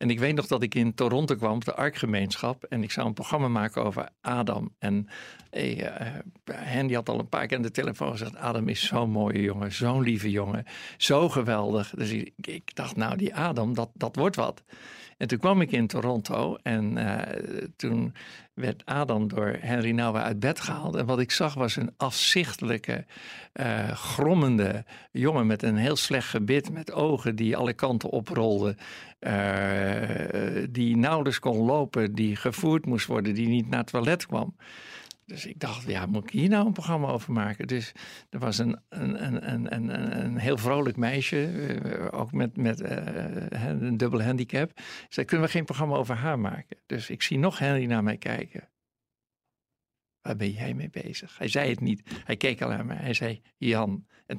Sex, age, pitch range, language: male, 50-69, 110-140 Hz, Dutch